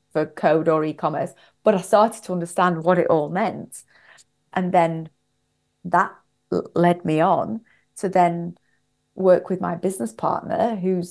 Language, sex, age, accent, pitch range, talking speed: English, female, 30-49, British, 170-205 Hz, 145 wpm